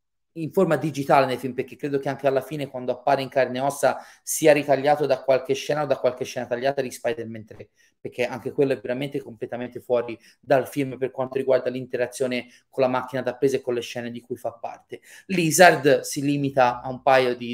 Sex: male